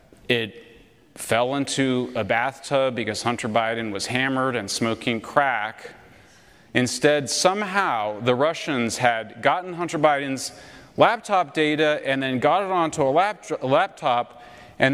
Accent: American